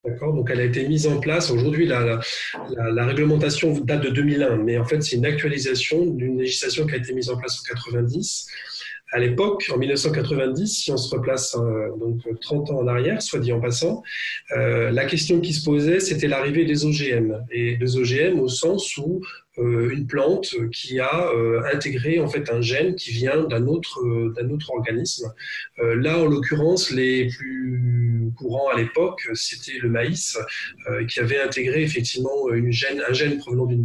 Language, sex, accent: French, male, French